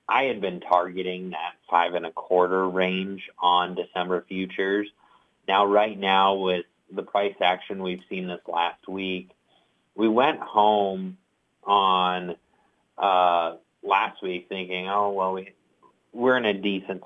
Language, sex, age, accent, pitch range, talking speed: English, male, 30-49, American, 90-100 Hz, 135 wpm